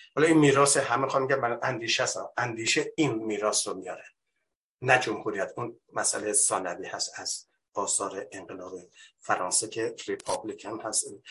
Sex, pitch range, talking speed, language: male, 130-175 Hz, 145 wpm, Persian